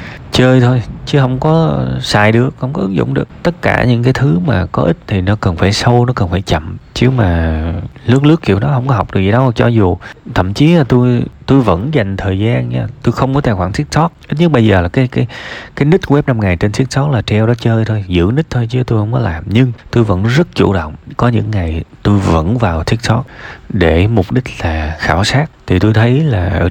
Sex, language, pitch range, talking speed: male, Vietnamese, 95-130 Hz, 245 wpm